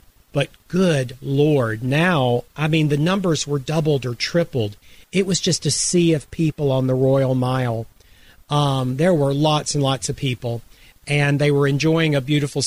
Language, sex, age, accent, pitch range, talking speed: English, male, 40-59, American, 130-155 Hz, 175 wpm